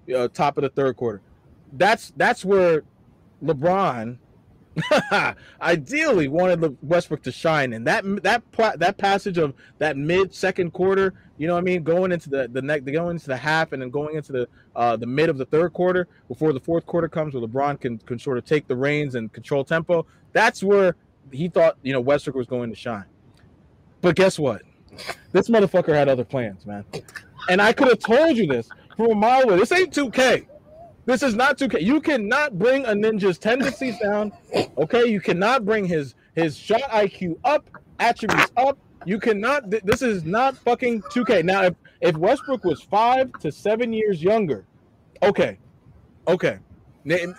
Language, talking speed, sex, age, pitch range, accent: English, 180 wpm, male, 20-39, 145-215 Hz, American